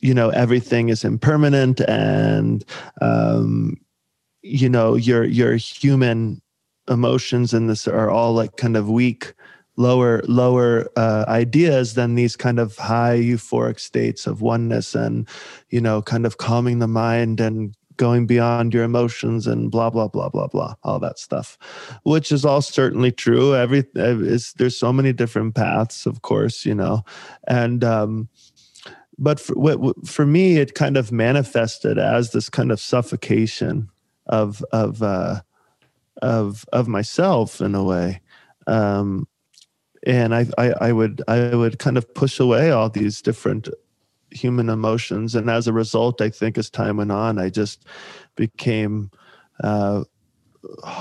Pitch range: 110-125 Hz